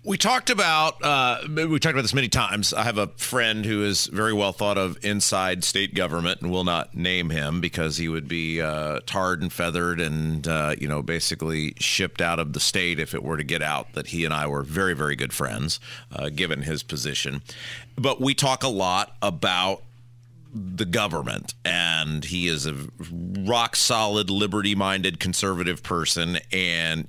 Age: 40-59